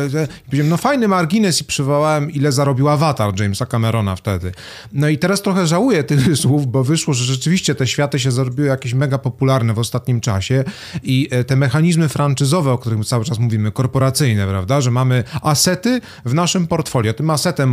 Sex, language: male, Polish